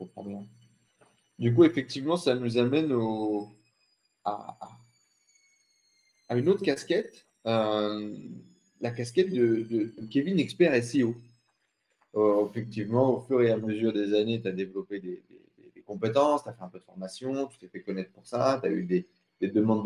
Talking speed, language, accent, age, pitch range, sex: 160 wpm, French, French, 30-49, 100-125 Hz, male